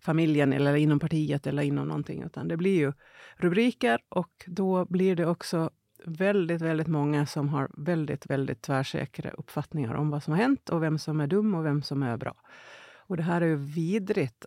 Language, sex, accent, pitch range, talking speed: Swedish, female, native, 145-190 Hz, 195 wpm